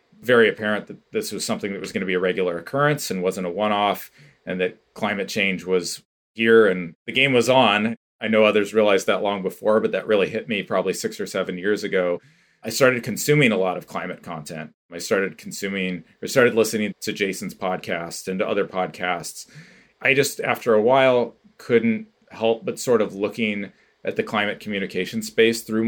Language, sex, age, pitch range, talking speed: English, male, 30-49, 100-125 Hz, 195 wpm